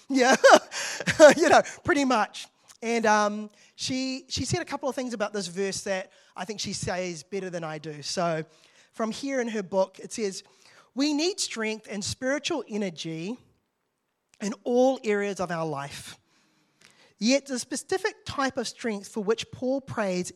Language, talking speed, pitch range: English, 165 wpm, 190-265 Hz